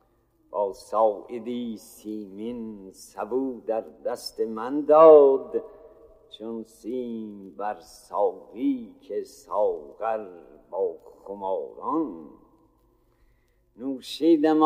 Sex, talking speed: male, 60 wpm